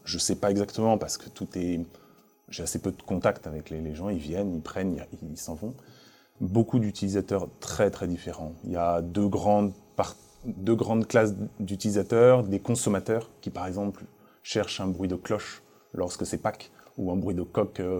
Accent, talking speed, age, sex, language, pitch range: French, 190 wpm, 20-39, male, French, 85-105 Hz